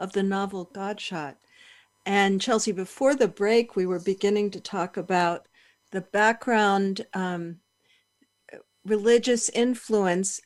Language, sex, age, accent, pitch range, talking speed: English, female, 50-69, American, 180-215 Hz, 115 wpm